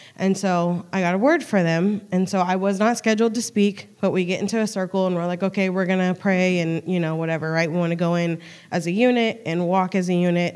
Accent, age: American, 20-39